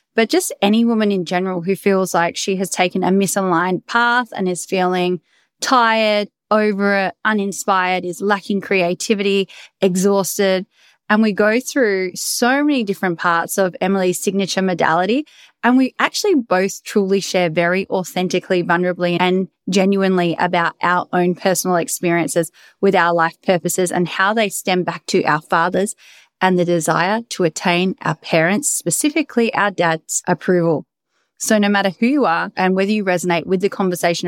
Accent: Australian